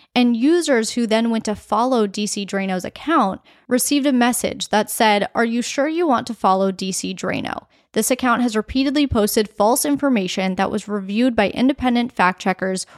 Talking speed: 175 wpm